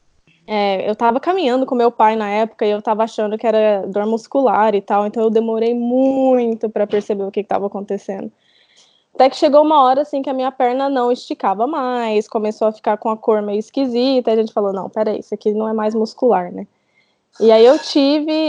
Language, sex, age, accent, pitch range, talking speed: Portuguese, female, 10-29, Brazilian, 215-275 Hz, 215 wpm